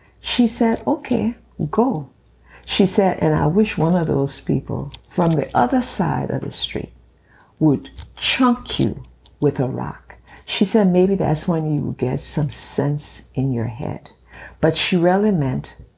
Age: 60-79